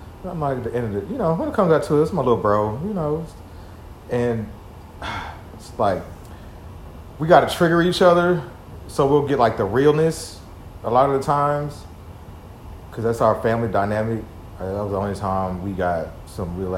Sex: male